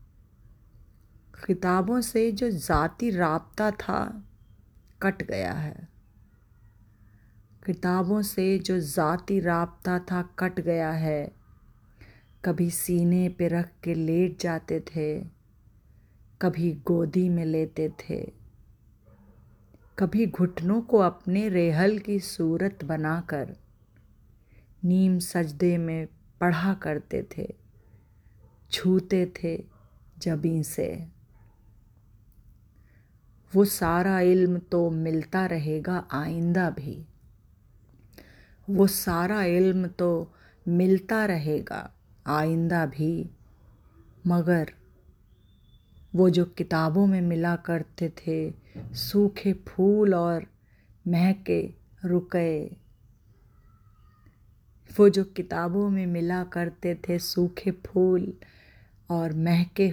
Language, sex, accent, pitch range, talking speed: Hindi, female, native, 115-180 Hz, 90 wpm